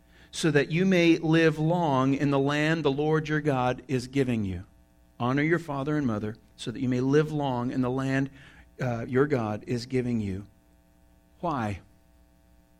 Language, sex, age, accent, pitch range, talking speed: English, male, 50-69, American, 100-150 Hz, 175 wpm